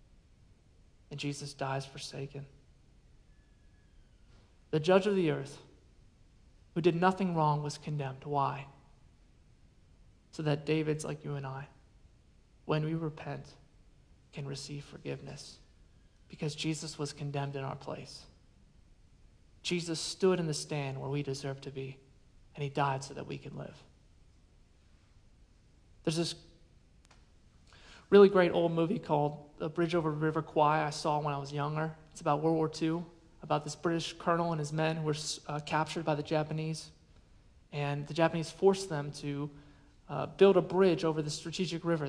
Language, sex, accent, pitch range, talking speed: English, male, American, 140-170 Hz, 150 wpm